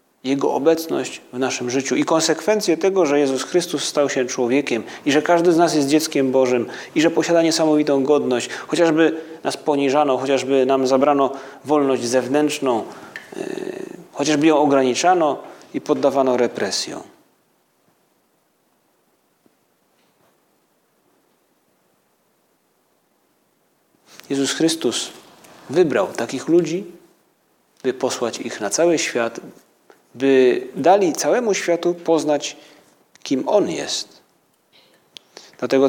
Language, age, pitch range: Polish, 40-59, 130-160 Hz